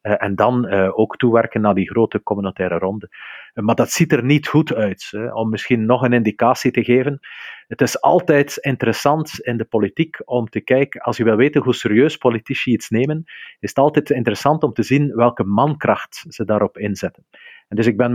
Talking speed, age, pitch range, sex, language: 190 wpm, 40-59, 105-140 Hz, male, Dutch